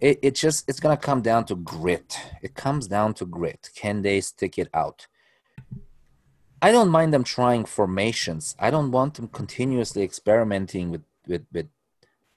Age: 30-49